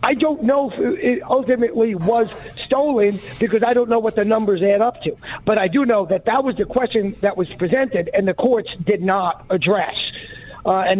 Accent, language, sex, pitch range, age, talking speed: American, English, male, 185-245 Hz, 50-69, 205 wpm